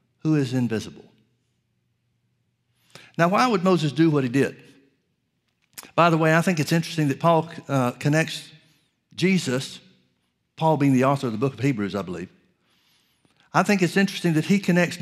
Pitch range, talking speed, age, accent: 135-180 Hz, 160 wpm, 60-79, American